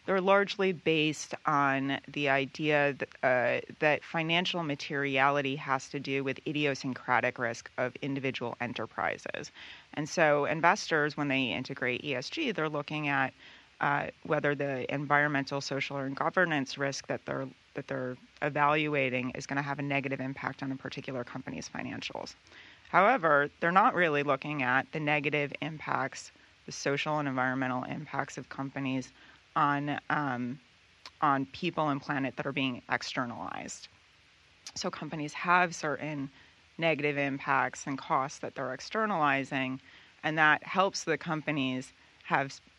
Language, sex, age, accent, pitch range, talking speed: English, female, 30-49, American, 135-155 Hz, 135 wpm